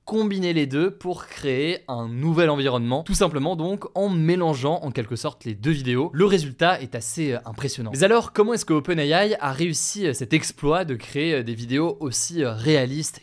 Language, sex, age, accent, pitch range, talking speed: French, male, 20-39, French, 125-155 Hz, 180 wpm